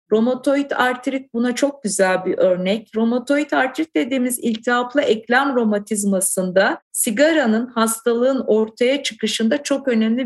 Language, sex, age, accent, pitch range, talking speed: Turkish, female, 50-69, native, 200-245 Hz, 110 wpm